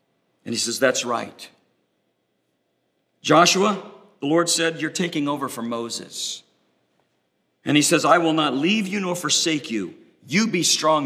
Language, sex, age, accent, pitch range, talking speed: English, male, 50-69, American, 160-220 Hz, 150 wpm